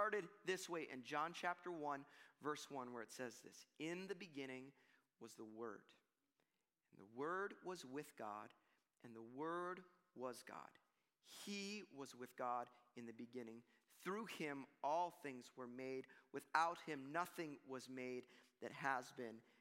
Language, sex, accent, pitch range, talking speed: English, male, American, 145-205 Hz, 155 wpm